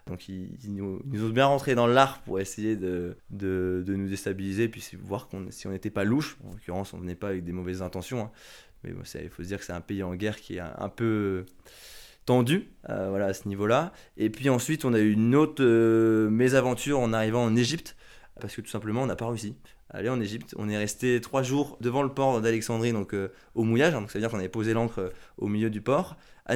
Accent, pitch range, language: French, 95-120 Hz, French